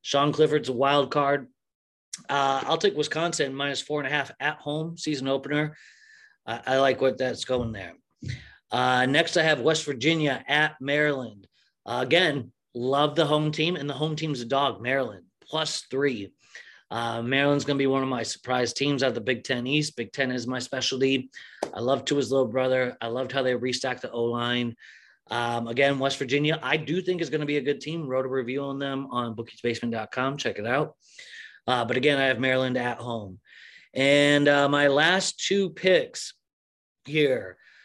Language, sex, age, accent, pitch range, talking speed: English, male, 30-49, American, 130-155 Hz, 190 wpm